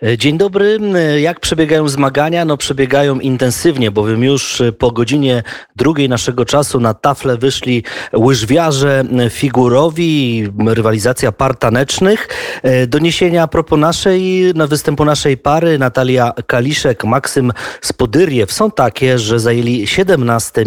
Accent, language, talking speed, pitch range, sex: native, Polish, 115 wpm, 115-150 Hz, male